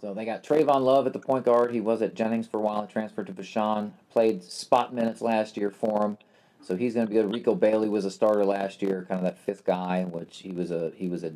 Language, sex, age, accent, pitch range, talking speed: English, male, 40-59, American, 90-120 Hz, 275 wpm